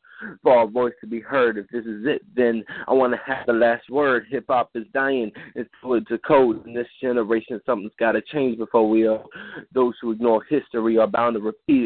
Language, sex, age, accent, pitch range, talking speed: English, male, 30-49, American, 120-145 Hz, 220 wpm